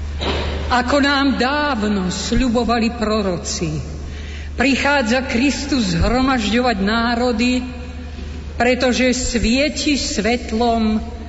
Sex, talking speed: female, 65 wpm